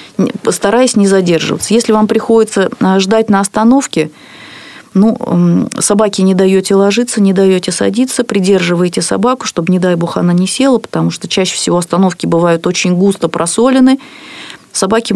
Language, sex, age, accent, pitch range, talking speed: Russian, female, 30-49, native, 180-225 Hz, 145 wpm